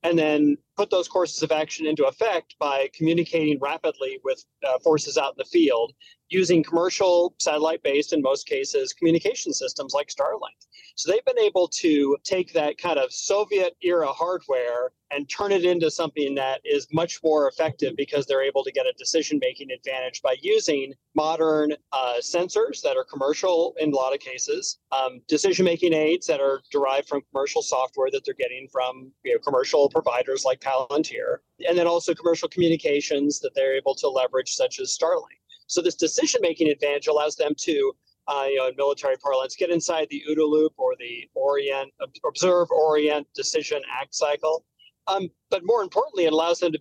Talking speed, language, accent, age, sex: 175 wpm, English, American, 30-49, male